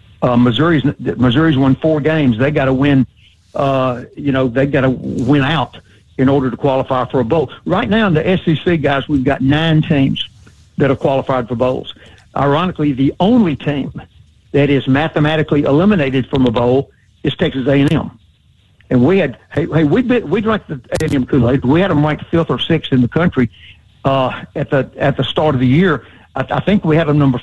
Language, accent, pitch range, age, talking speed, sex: English, American, 125-150 Hz, 60-79, 200 wpm, male